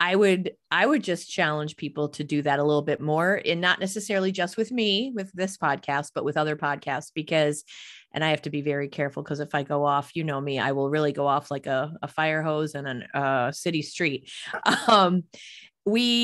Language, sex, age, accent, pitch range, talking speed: English, female, 30-49, American, 140-165 Hz, 220 wpm